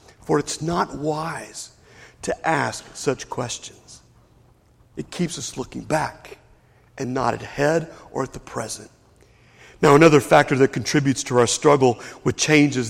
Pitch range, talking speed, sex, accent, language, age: 130-180 Hz, 150 wpm, male, American, English, 50-69